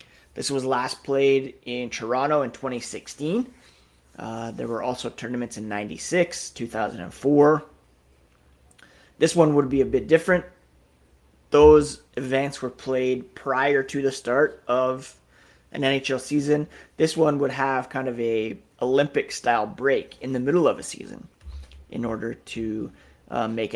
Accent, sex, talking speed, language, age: American, male, 140 wpm, English, 30-49